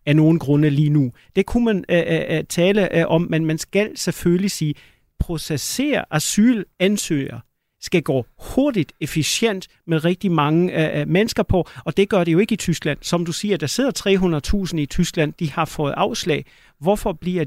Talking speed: 180 wpm